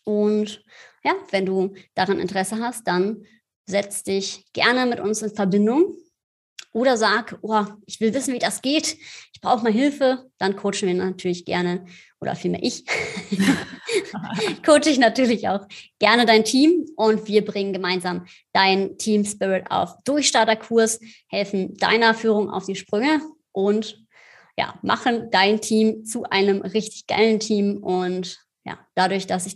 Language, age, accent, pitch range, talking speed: German, 30-49, German, 185-225 Hz, 150 wpm